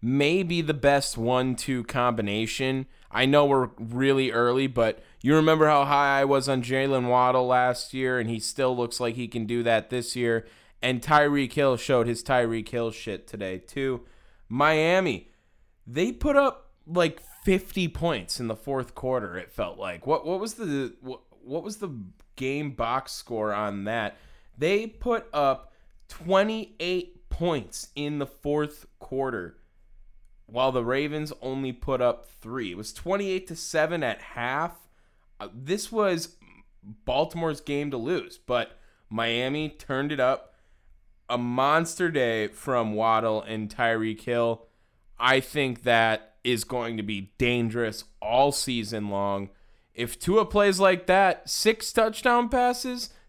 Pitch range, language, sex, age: 115-155 Hz, English, male, 20-39